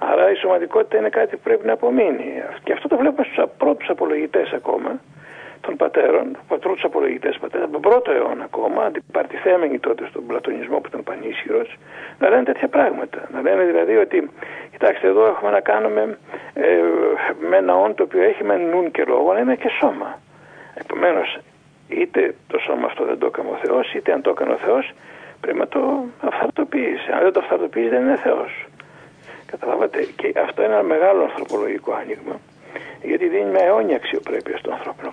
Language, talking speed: Greek, 175 wpm